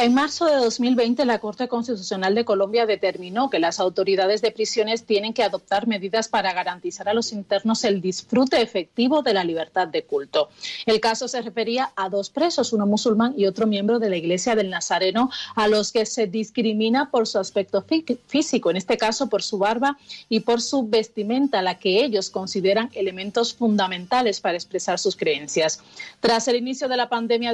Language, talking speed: Spanish, 185 wpm